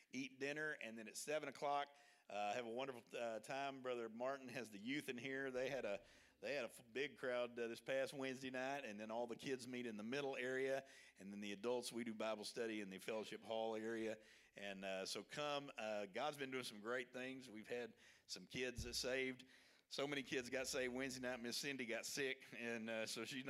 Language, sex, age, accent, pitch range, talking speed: English, male, 50-69, American, 105-130 Hz, 220 wpm